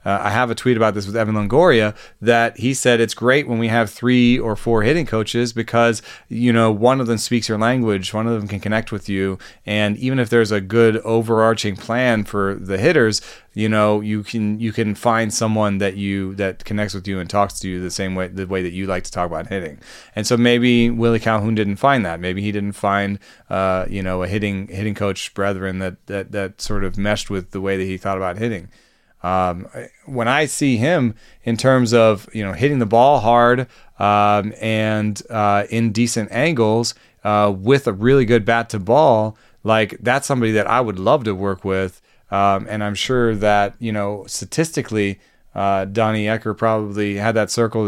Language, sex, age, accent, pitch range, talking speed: English, male, 30-49, American, 100-115 Hz, 210 wpm